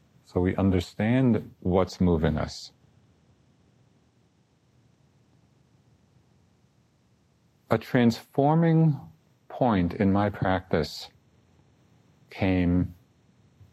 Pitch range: 90-125 Hz